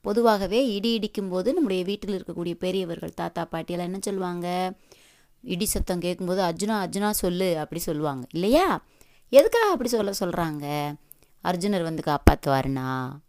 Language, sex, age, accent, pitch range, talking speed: Tamil, female, 20-39, native, 170-225 Hz, 125 wpm